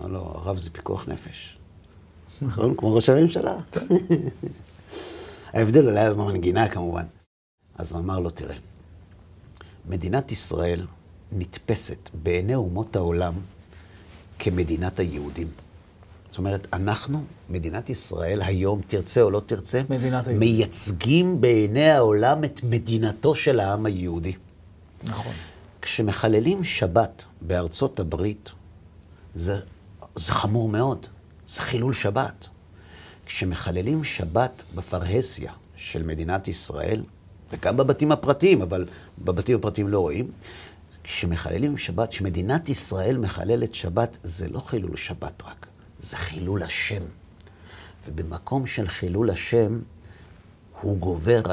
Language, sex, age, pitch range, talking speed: Hebrew, male, 60-79, 90-115 Hz, 105 wpm